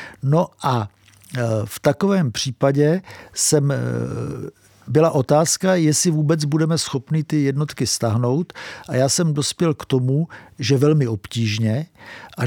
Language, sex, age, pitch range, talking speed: English, male, 50-69, 120-155 Hz, 120 wpm